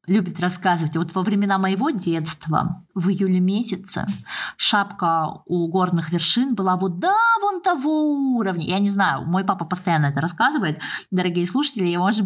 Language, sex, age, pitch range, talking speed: Russian, female, 20-39, 185-260 Hz, 150 wpm